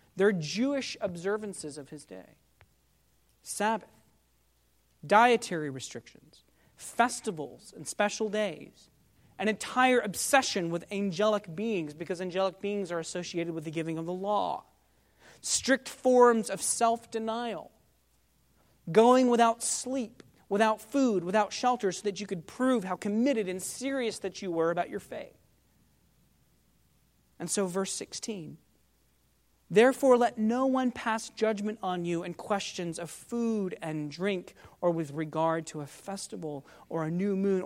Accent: American